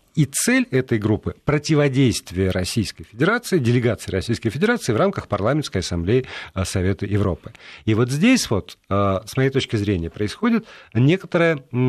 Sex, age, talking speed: male, 50-69, 135 wpm